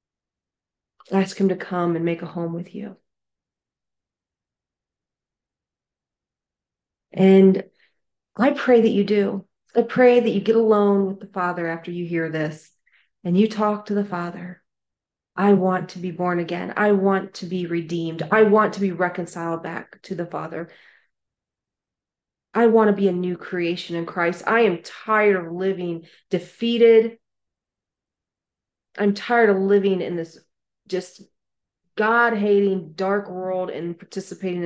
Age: 40-59